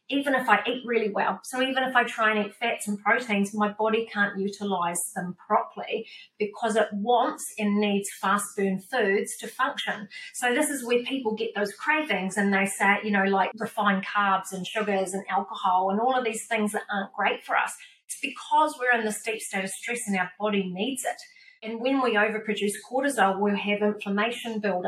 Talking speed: 205 wpm